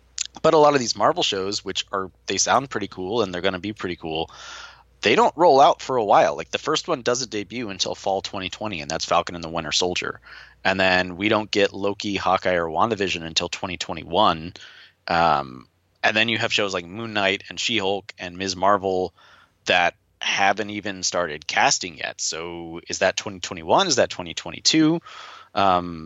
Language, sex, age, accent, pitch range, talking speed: English, male, 30-49, American, 90-115 Hz, 190 wpm